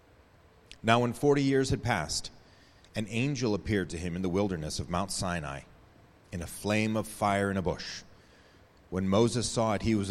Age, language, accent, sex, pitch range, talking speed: 30-49, English, American, male, 90-115 Hz, 185 wpm